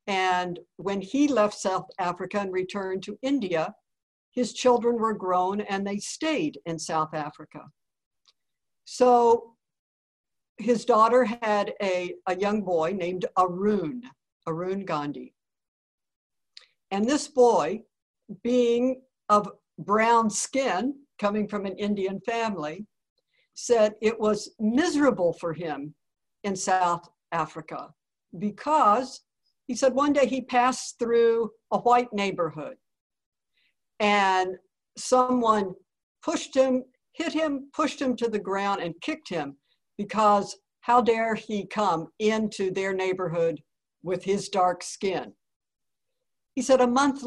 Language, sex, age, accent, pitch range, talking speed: English, female, 60-79, American, 185-245 Hz, 120 wpm